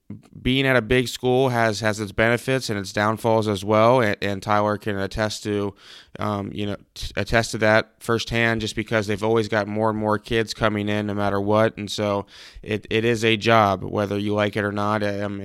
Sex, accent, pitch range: male, American, 100-110 Hz